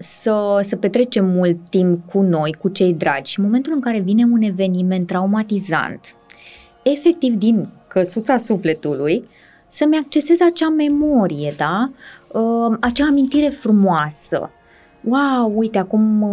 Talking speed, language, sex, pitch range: 125 wpm, Romanian, female, 185-245 Hz